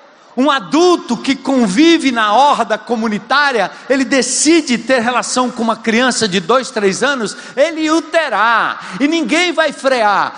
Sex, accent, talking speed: male, Brazilian, 145 wpm